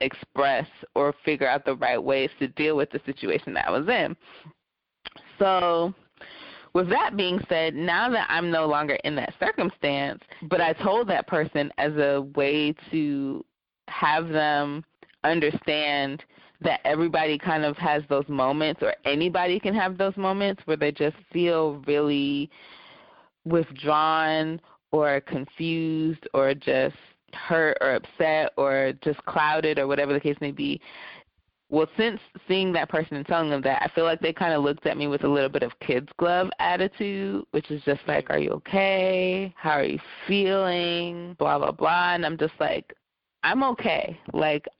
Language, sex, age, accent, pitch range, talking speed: English, female, 20-39, American, 145-175 Hz, 165 wpm